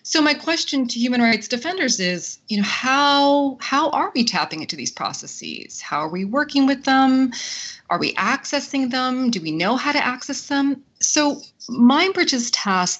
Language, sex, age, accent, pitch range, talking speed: English, female, 30-49, American, 175-245 Hz, 175 wpm